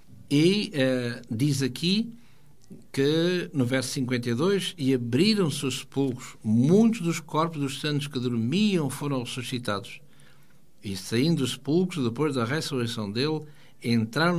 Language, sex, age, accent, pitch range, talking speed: Portuguese, male, 60-79, Portuguese, 120-155 Hz, 120 wpm